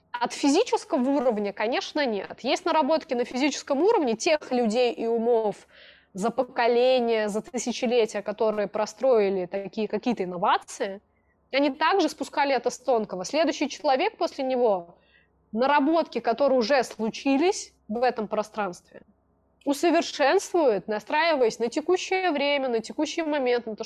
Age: 20-39